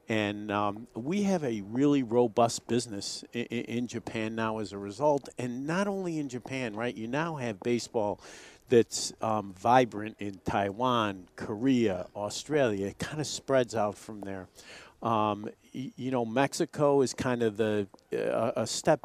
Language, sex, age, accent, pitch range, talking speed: English, male, 50-69, American, 110-125 Hz, 160 wpm